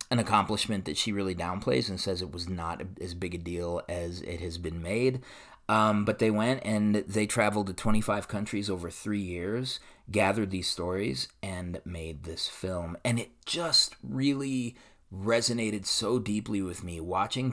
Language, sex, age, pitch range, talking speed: English, male, 30-49, 90-110 Hz, 170 wpm